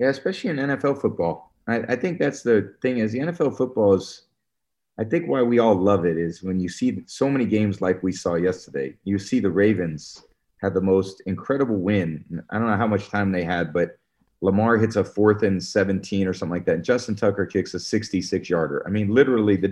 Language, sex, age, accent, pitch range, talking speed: English, male, 30-49, American, 95-110 Hz, 220 wpm